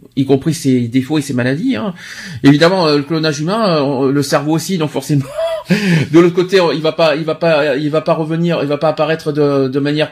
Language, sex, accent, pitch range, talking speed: French, male, French, 140-195 Hz, 220 wpm